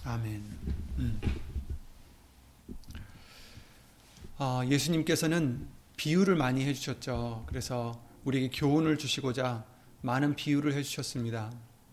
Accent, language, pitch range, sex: native, Korean, 115-150 Hz, male